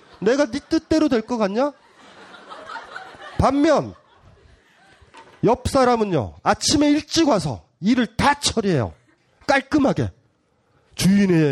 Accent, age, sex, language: native, 30-49, male, Korean